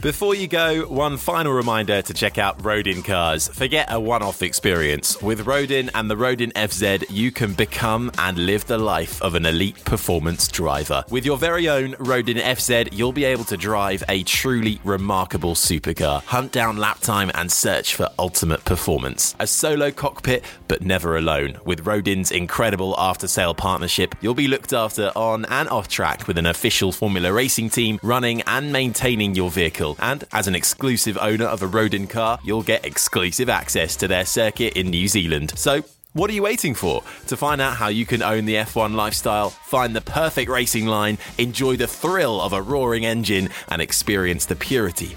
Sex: male